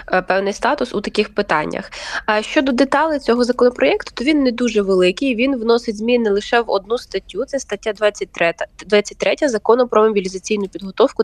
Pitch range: 195-245 Hz